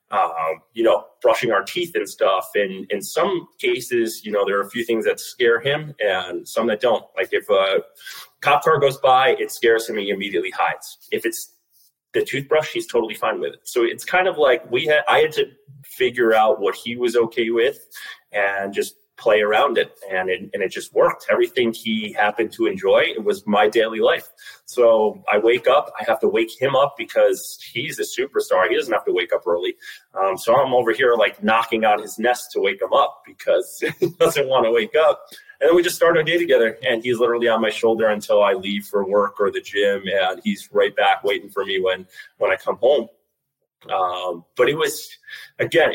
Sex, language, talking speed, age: male, English, 220 wpm, 30-49